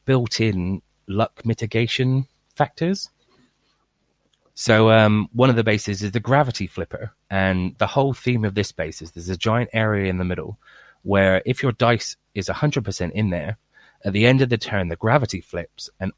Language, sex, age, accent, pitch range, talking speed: English, male, 30-49, British, 100-125 Hz, 175 wpm